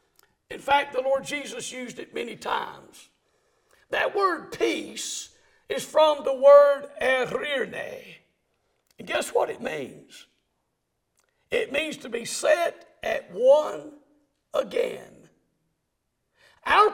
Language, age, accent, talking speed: English, 60-79, American, 110 wpm